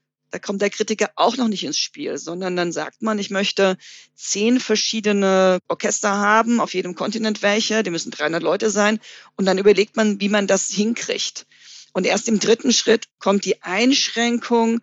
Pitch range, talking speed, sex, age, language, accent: 205-235 Hz, 180 wpm, female, 40-59, German, German